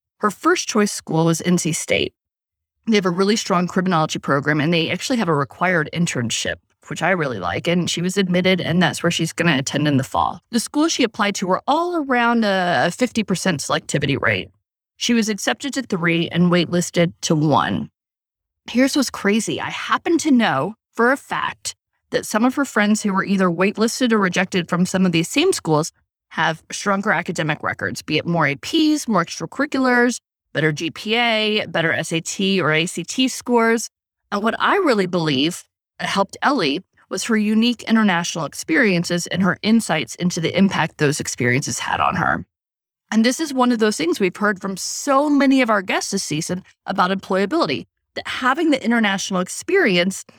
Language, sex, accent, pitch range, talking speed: English, female, American, 165-230 Hz, 180 wpm